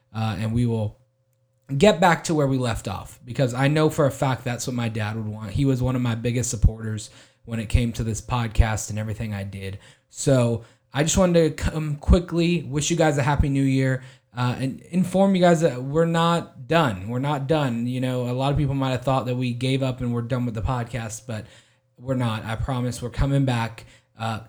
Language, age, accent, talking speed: English, 20-39, American, 230 wpm